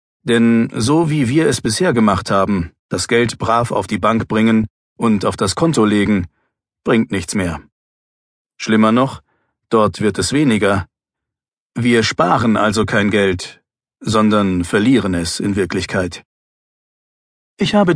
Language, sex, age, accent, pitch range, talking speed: German, male, 40-59, German, 95-130 Hz, 135 wpm